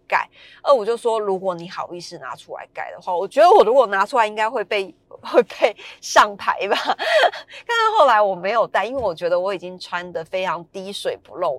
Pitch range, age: 180-270 Hz, 30-49